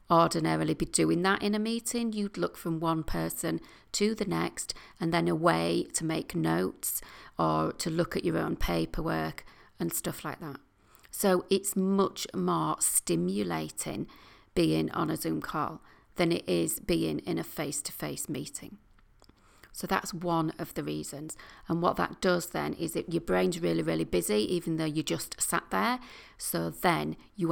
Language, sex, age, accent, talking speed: English, female, 40-59, British, 170 wpm